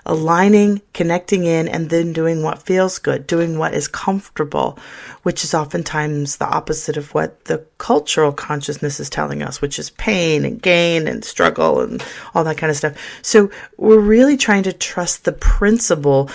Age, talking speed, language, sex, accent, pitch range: 40-59, 175 wpm, English, female, American, 150-190 Hz